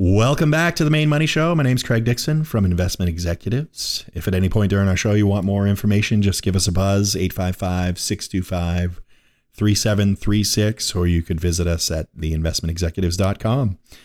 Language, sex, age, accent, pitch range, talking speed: English, male, 30-49, American, 90-110 Hz, 165 wpm